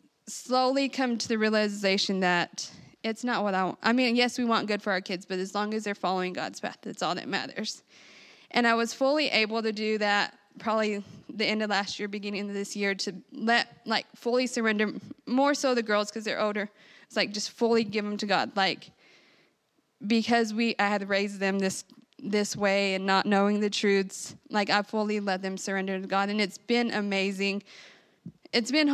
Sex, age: female, 20-39